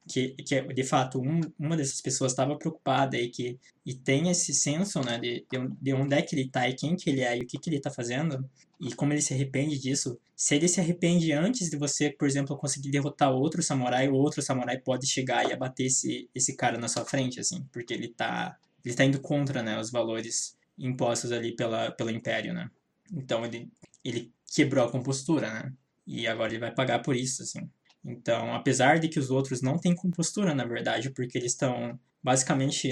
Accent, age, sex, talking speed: Brazilian, 20-39, male, 210 wpm